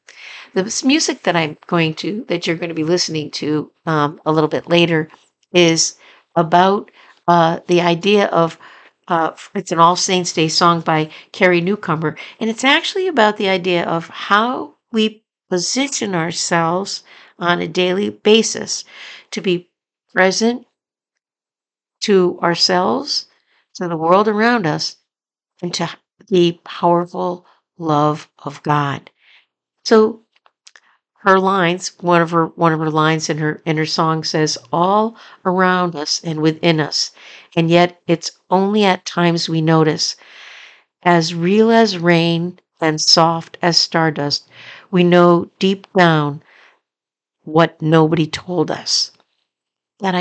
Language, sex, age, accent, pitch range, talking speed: English, female, 60-79, American, 160-185 Hz, 130 wpm